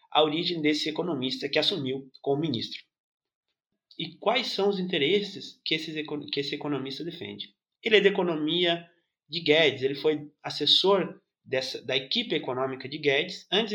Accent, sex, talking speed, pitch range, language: Brazilian, male, 145 wpm, 140-185 Hz, Portuguese